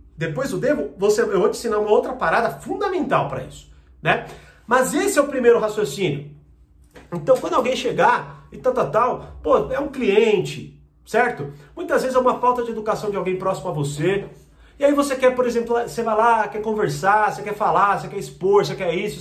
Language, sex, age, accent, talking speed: Portuguese, male, 40-59, Brazilian, 205 wpm